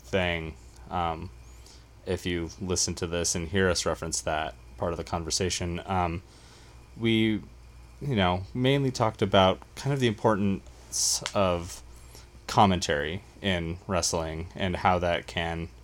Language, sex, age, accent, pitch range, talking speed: English, male, 20-39, American, 80-95 Hz, 135 wpm